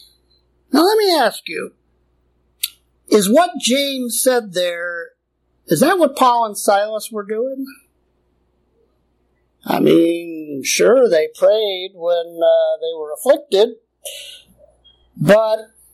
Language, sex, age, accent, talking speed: English, male, 50-69, American, 110 wpm